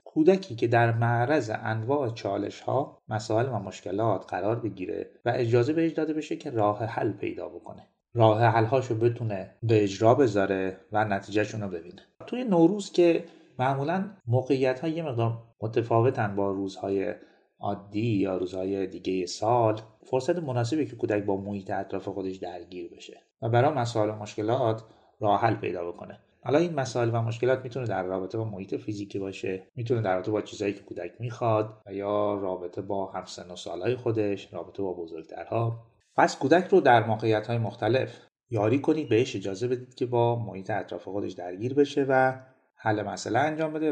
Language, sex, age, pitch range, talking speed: Persian, male, 30-49, 100-130 Hz, 165 wpm